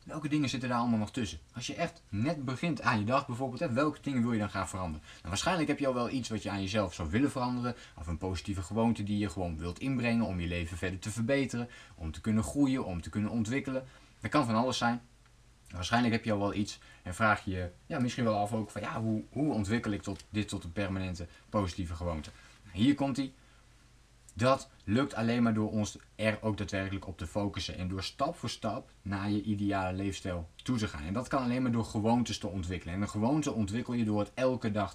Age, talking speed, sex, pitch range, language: 20-39, 230 wpm, male, 100-120 Hz, Dutch